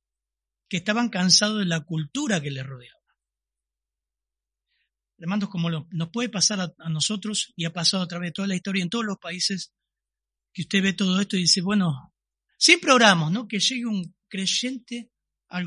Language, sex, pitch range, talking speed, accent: Spanish, male, 155-215 Hz, 190 wpm, Argentinian